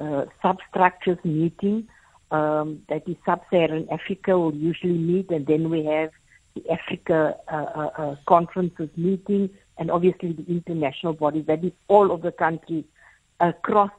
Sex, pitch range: female, 160-195 Hz